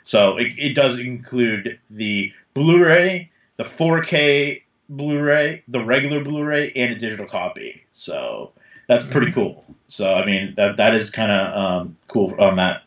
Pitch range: 100-130 Hz